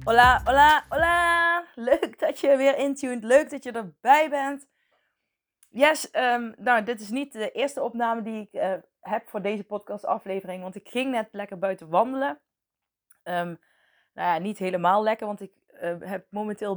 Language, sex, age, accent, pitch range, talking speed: Dutch, female, 20-39, Dutch, 180-230 Hz, 165 wpm